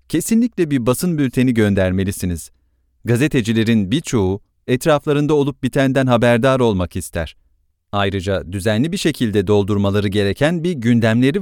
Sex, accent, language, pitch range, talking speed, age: male, Turkish, English, 95-125 Hz, 110 wpm, 40-59